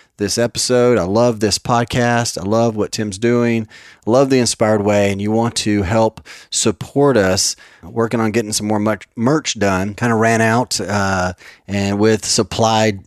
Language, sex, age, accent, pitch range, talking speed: English, male, 30-49, American, 100-115 Hz, 175 wpm